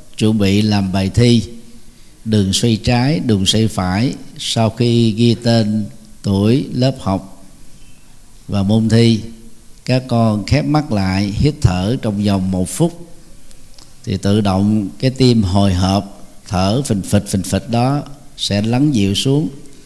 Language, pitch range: Vietnamese, 100-125 Hz